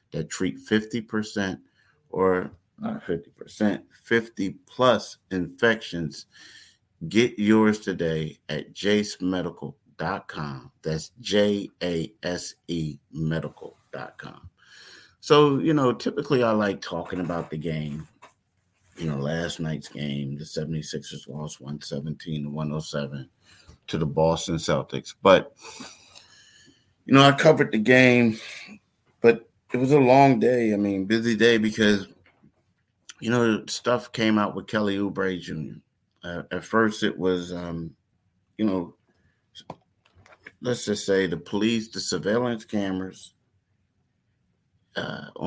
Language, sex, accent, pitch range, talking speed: English, male, American, 80-110 Hz, 110 wpm